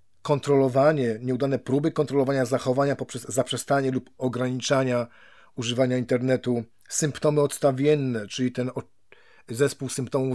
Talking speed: 100 wpm